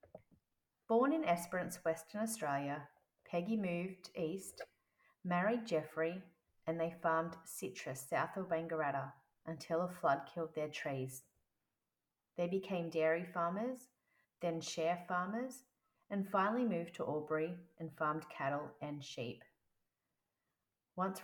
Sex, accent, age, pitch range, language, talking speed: female, Australian, 30-49, 150-190 Hz, English, 115 wpm